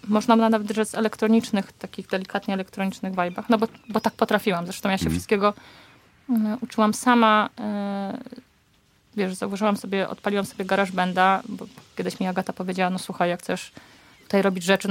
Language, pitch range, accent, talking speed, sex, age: Polish, 185-220 Hz, native, 155 wpm, female, 20-39